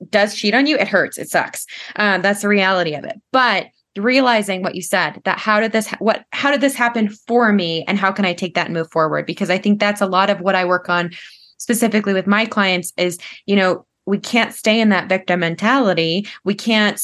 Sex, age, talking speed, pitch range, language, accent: female, 20-39, 230 wpm, 180-215 Hz, English, American